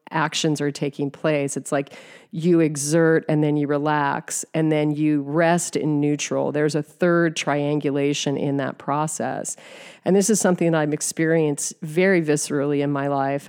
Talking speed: 165 wpm